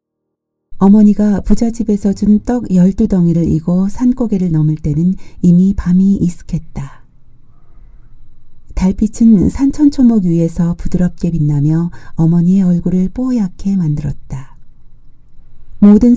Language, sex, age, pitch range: Korean, female, 40-59, 155-195 Hz